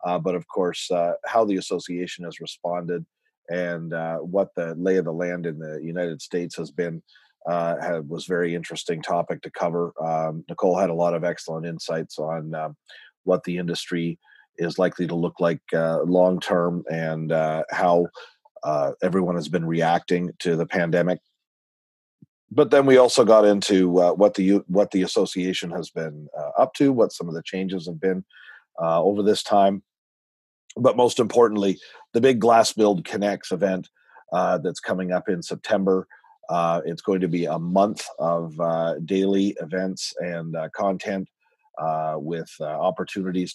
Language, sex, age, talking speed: English, male, 40-59, 170 wpm